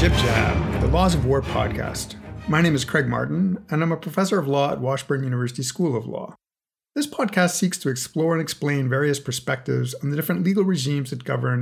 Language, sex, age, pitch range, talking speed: English, male, 50-69, 125-160 Hz, 195 wpm